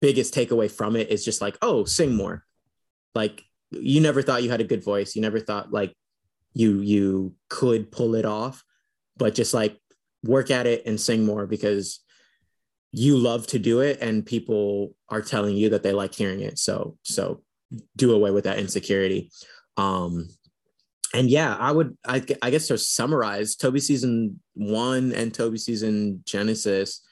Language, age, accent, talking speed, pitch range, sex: English, 20-39, American, 175 wpm, 100-115 Hz, male